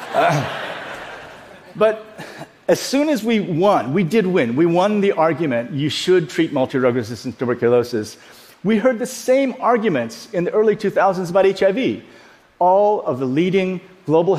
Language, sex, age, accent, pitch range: Korean, male, 50-69, American, 140-195 Hz